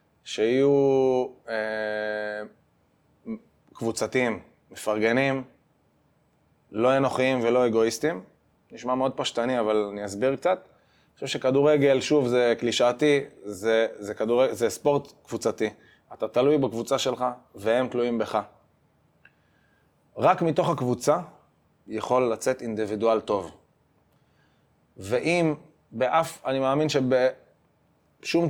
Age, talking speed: 20-39, 100 wpm